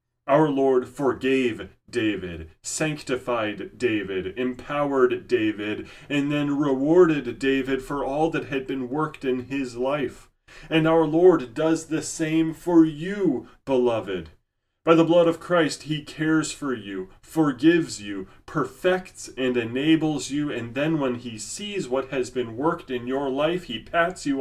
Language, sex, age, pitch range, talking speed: English, male, 30-49, 110-150 Hz, 145 wpm